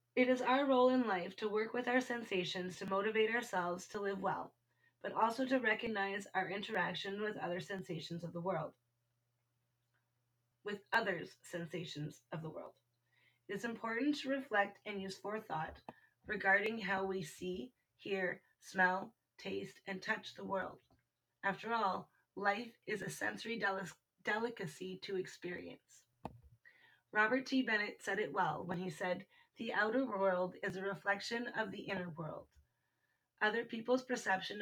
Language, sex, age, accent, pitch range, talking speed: English, female, 30-49, American, 180-215 Hz, 145 wpm